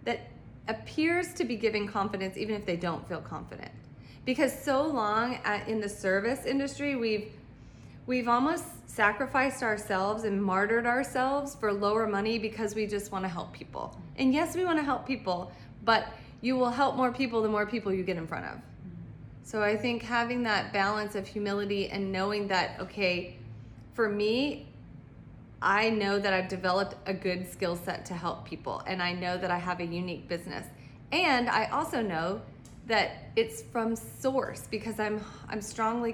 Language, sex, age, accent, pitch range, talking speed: English, female, 30-49, American, 185-230 Hz, 170 wpm